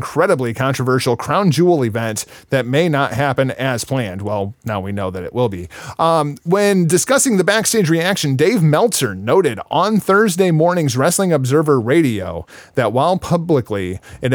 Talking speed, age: 160 wpm, 30-49